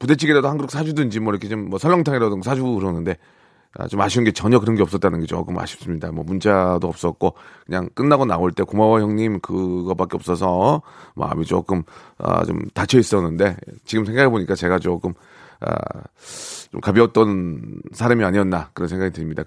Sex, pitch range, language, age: male, 100-145 Hz, Korean, 30-49